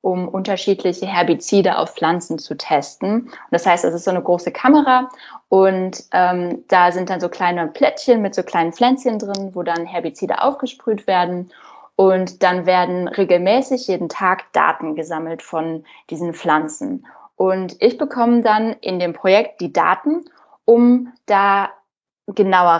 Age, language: 10-29, German